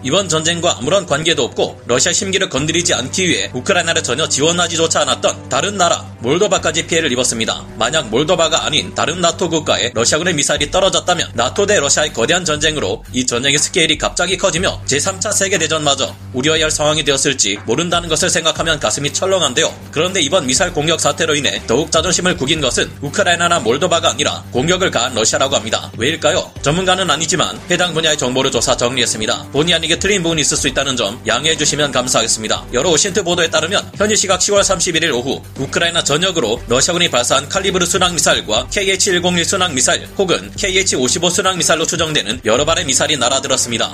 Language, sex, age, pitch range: Korean, male, 30-49, 135-180 Hz